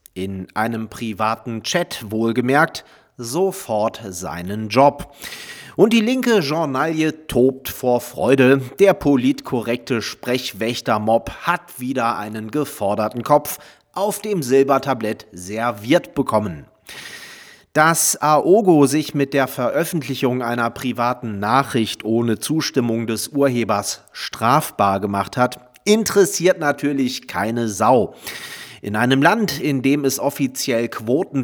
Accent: German